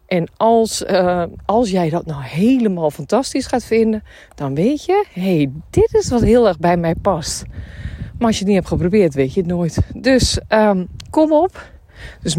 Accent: Dutch